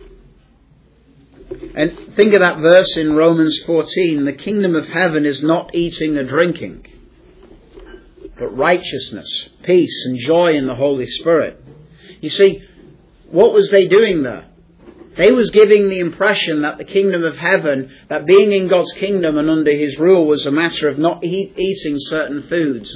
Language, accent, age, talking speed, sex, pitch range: English, British, 50-69, 160 wpm, male, 145-195 Hz